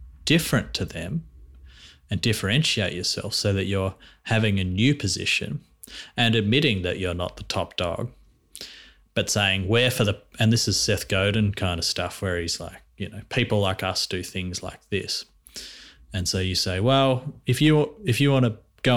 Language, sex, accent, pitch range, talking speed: English, male, Australian, 95-115 Hz, 185 wpm